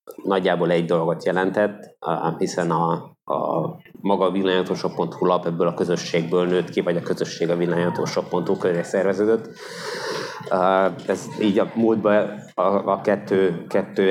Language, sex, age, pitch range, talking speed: Hungarian, male, 20-39, 90-100 Hz, 125 wpm